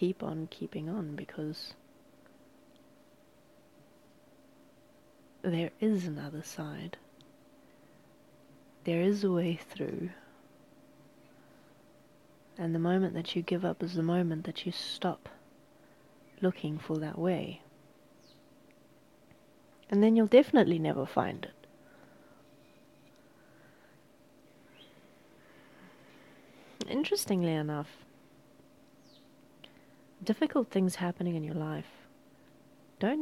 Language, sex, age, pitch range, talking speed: English, female, 30-49, 160-200 Hz, 85 wpm